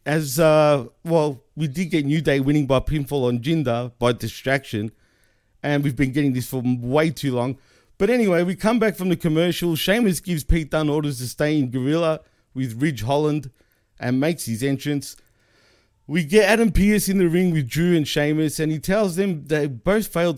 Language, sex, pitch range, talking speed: English, male, 135-170 Hz, 195 wpm